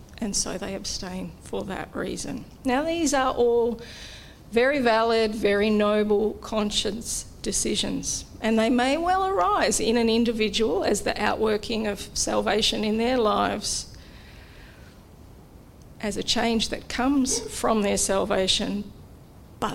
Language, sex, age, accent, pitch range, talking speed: English, female, 40-59, Australian, 210-245 Hz, 130 wpm